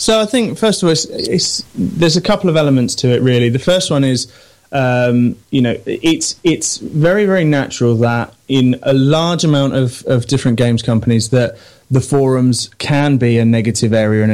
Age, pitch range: 20-39, 120-150 Hz